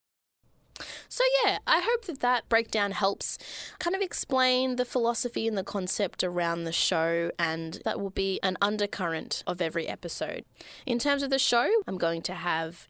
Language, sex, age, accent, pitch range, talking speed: English, female, 20-39, Australian, 170-250 Hz, 170 wpm